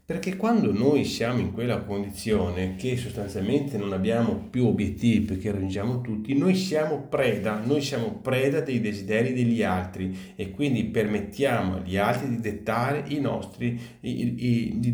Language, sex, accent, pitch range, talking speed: Italian, male, native, 100-120 Hz, 145 wpm